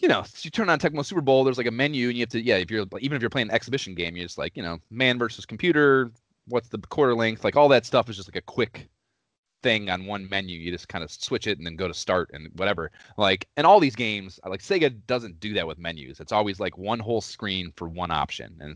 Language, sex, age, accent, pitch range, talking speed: English, male, 30-49, American, 90-130 Hz, 280 wpm